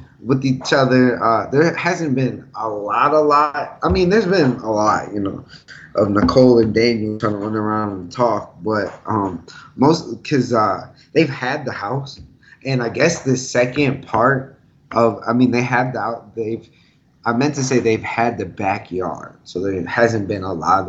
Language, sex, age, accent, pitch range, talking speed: English, male, 20-39, American, 110-135 Hz, 190 wpm